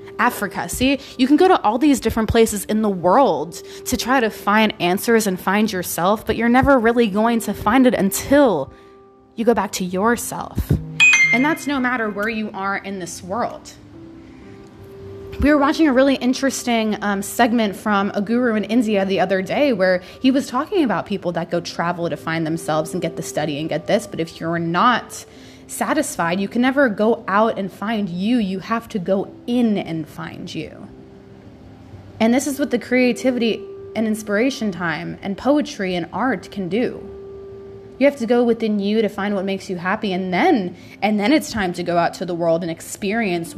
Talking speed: 195 wpm